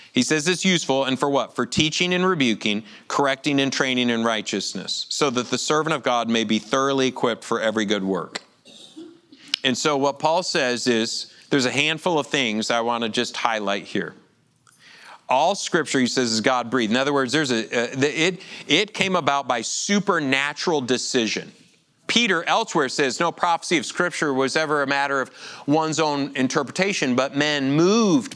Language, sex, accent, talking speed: English, male, American, 180 wpm